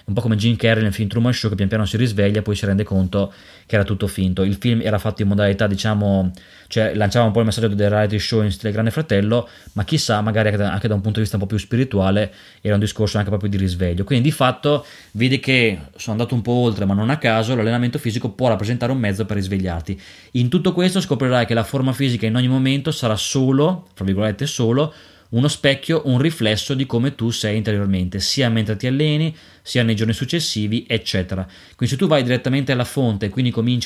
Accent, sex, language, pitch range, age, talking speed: native, male, Italian, 105-130 Hz, 20-39, 230 wpm